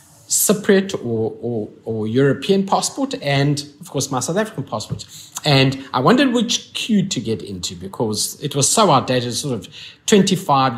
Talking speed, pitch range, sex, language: 160 wpm, 125-175 Hz, male, English